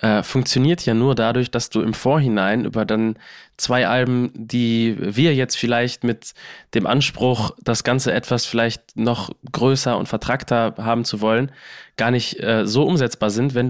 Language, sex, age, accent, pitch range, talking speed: German, male, 20-39, German, 110-130 Hz, 165 wpm